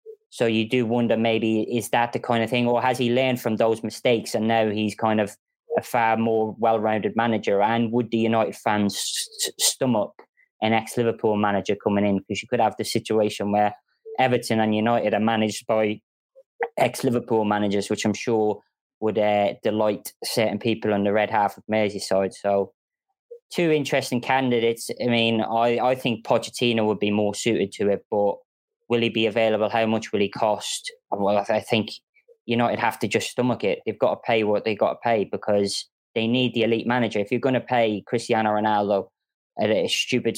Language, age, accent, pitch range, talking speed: English, 20-39, British, 105-125 Hz, 190 wpm